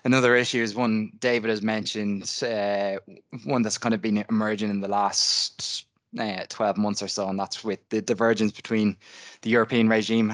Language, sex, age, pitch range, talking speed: English, male, 20-39, 95-110 Hz, 180 wpm